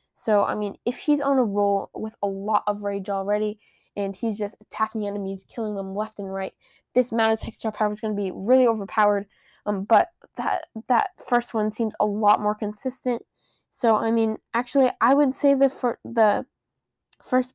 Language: English